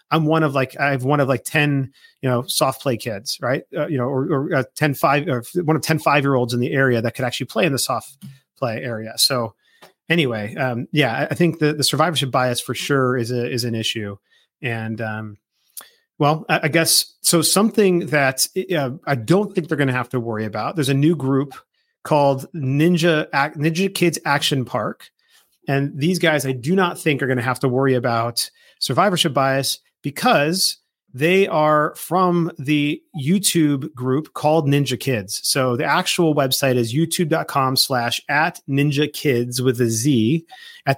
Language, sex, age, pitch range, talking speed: English, male, 30-49, 130-160 Hz, 190 wpm